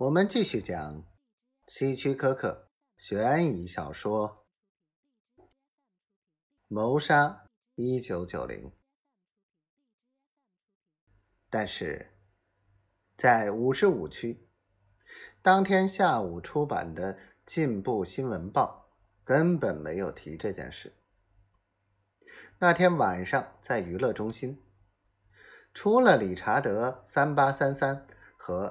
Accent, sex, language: native, male, Chinese